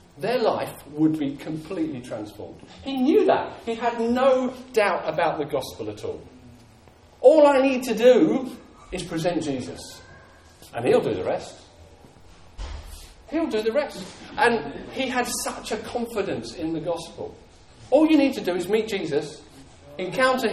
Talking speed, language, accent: 155 wpm, English, British